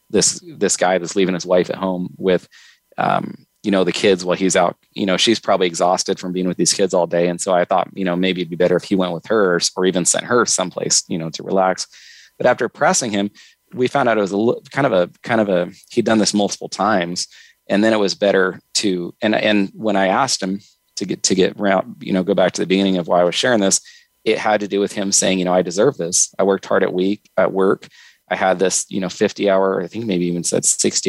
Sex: male